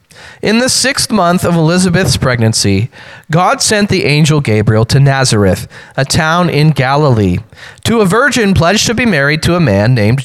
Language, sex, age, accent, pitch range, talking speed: English, male, 30-49, American, 125-190 Hz, 170 wpm